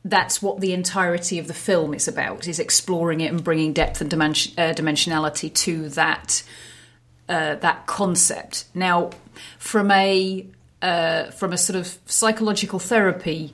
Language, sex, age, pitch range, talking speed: English, female, 40-59, 170-210 Hz, 140 wpm